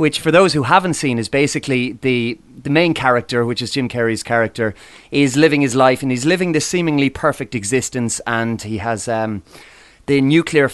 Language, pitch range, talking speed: English, 120-155 Hz, 190 wpm